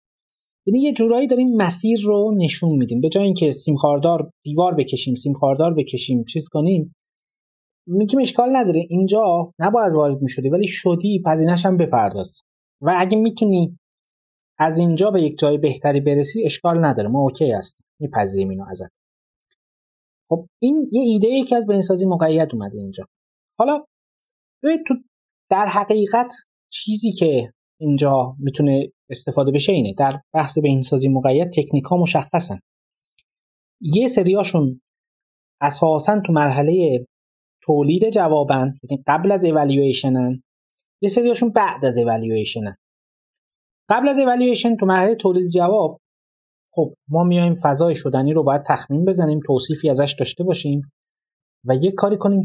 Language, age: Persian, 30-49